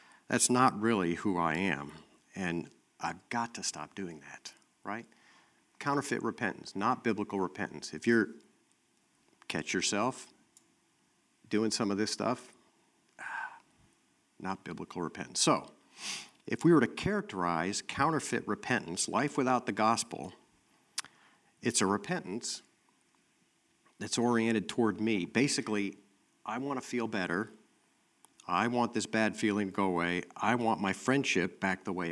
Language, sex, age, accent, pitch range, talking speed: English, male, 50-69, American, 90-115 Hz, 135 wpm